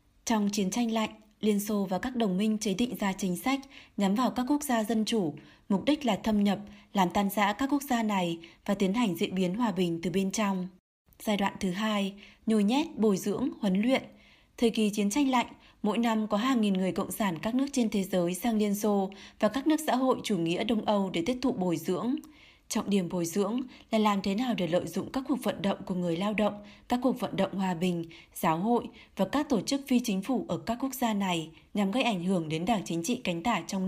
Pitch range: 190-240 Hz